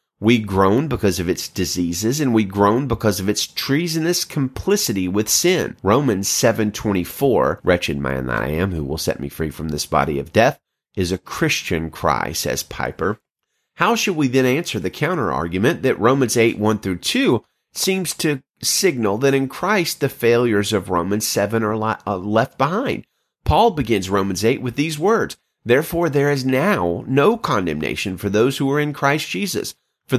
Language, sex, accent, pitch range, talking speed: English, male, American, 95-135 Hz, 175 wpm